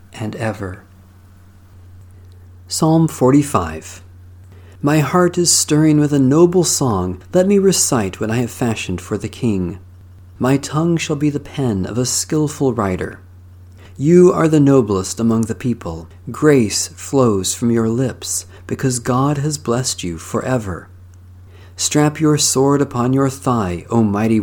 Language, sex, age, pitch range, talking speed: English, male, 40-59, 95-130 Hz, 145 wpm